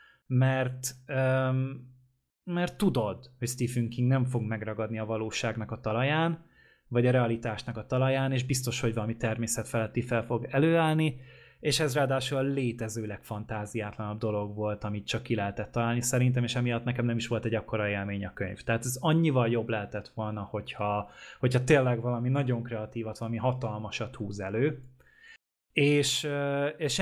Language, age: Hungarian, 20-39